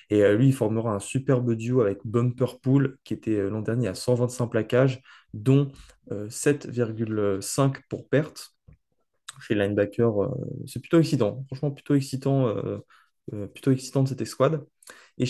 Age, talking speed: 20-39, 135 wpm